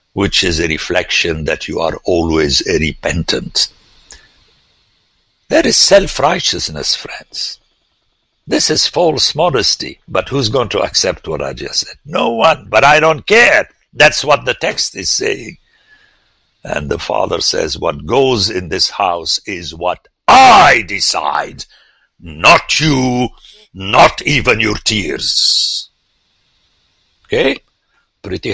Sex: male